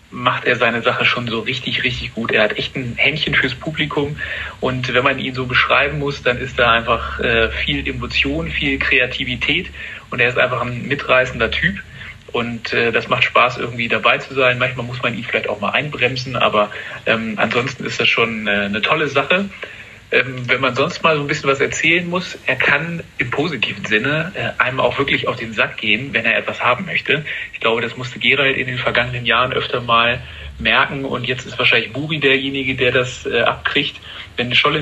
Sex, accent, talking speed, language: male, German, 200 wpm, German